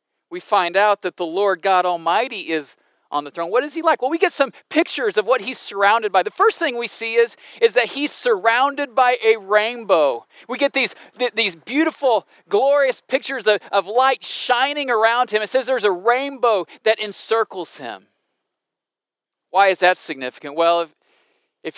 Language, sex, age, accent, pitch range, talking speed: English, male, 40-59, American, 180-265 Hz, 185 wpm